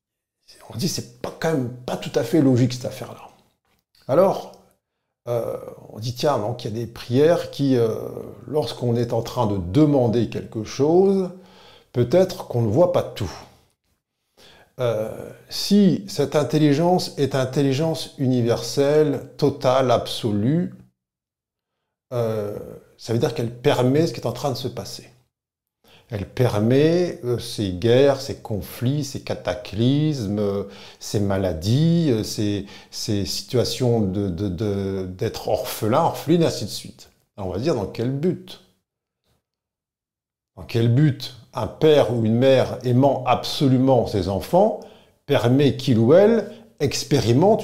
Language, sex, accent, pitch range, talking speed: French, male, French, 115-145 Hz, 140 wpm